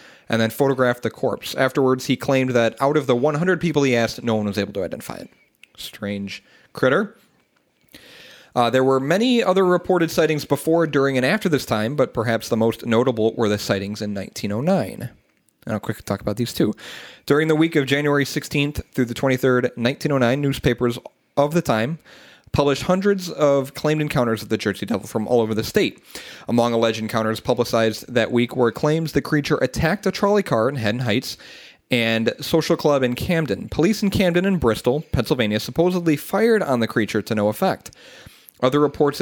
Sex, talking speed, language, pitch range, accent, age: male, 185 wpm, English, 110-150 Hz, American, 30-49